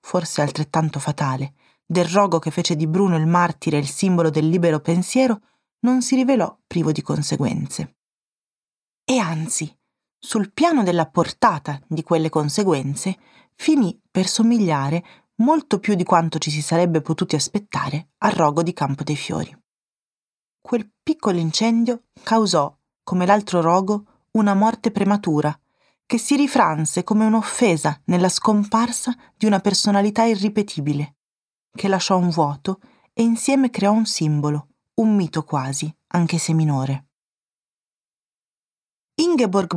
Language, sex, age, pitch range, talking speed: Italian, female, 30-49, 160-225 Hz, 130 wpm